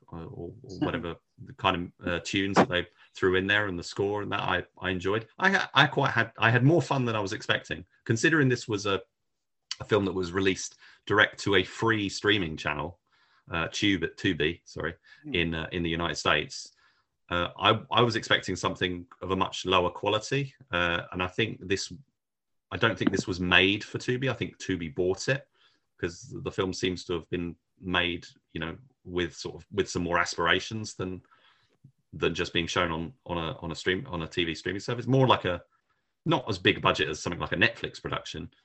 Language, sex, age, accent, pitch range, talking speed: English, male, 30-49, British, 85-105 Hz, 210 wpm